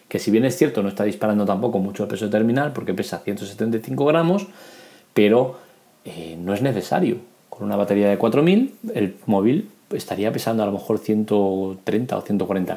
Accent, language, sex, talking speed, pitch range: Spanish, Spanish, male, 175 wpm, 100-115 Hz